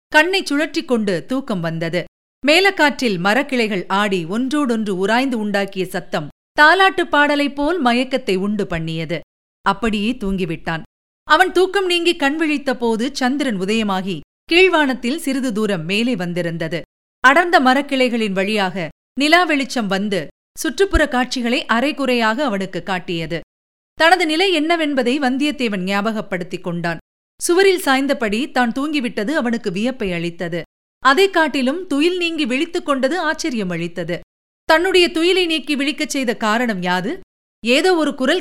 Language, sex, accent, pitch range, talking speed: Tamil, female, native, 200-300 Hz, 115 wpm